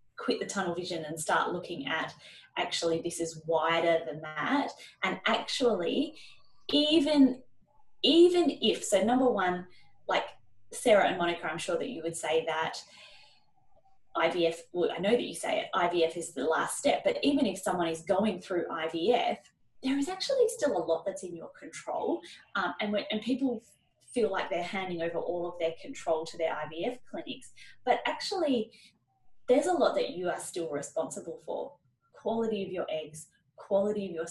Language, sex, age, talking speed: English, female, 10-29, 175 wpm